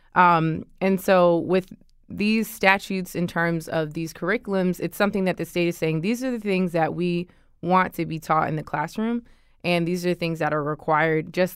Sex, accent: female, American